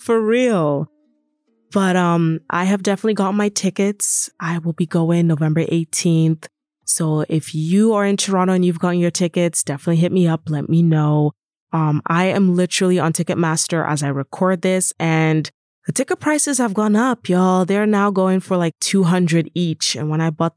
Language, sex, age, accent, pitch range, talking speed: English, female, 20-39, American, 165-205 Hz, 185 wpm